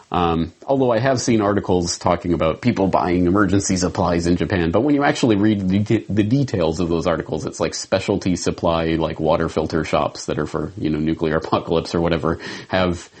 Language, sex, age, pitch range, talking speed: English, male, 30-49, 85-115 Hz, 195 wpm